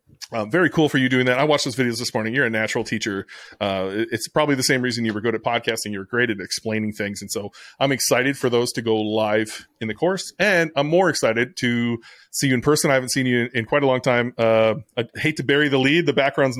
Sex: male